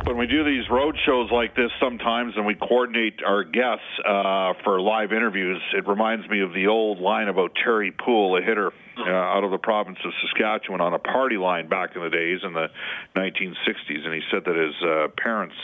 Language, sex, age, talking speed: English, male, 50-69, 210 wpm